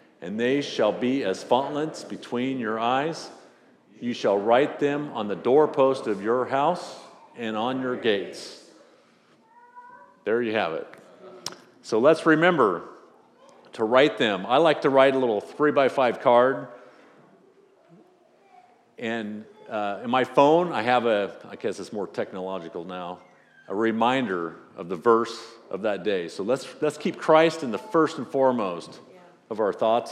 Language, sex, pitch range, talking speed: English, male, 110-145 Hz, 150 wpm